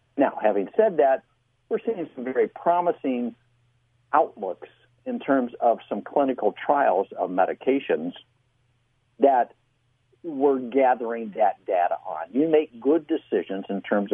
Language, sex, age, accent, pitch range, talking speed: English, male, 60-79, American, 120-155 Hz, 125 wpm